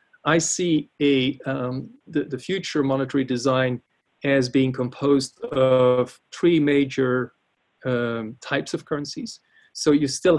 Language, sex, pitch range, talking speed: English, male, 125-145 Hz, 125 wpm